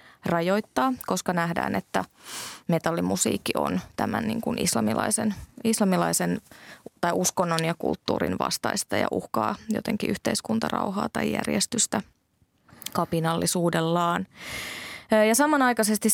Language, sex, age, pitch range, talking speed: Finnish, female, 20-39, 165-210 Hz, 80 wpm